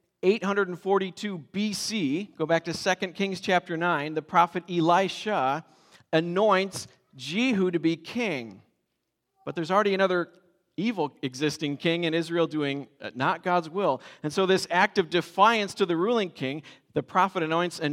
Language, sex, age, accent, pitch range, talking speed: English, male, 40-59, American, 155-200 Hz, 145 wpm